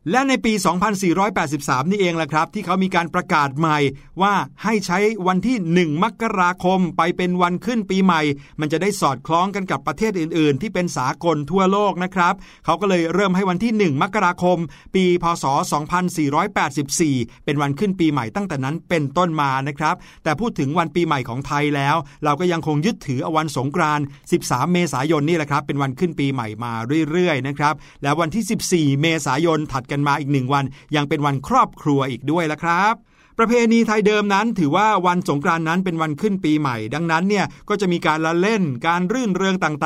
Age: 60-79